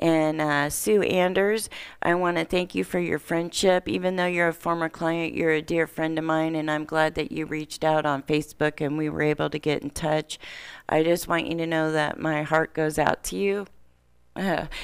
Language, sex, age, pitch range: English, female, 40-59, 155-180 Hz